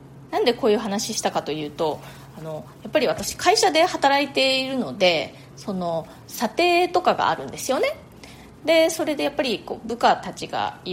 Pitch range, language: 190-285 Hz, Japanese